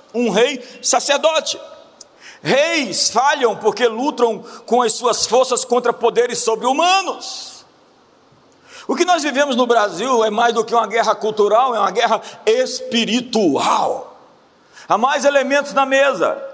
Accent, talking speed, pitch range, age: Brazilian, 135 wpm, 235-285 Hz, 50-69